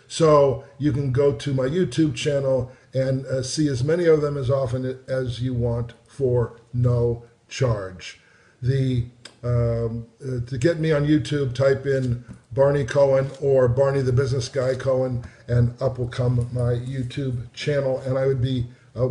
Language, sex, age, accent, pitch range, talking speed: English, male, 50-69, American, 125-145 Hz, 165 wpm